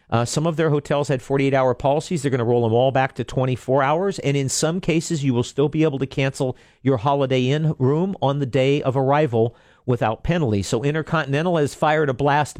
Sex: male